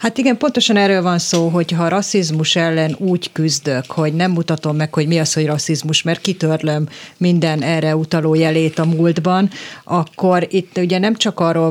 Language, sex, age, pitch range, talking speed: Hungarian, female, 30-49, 155-175 Hz, 175 wpm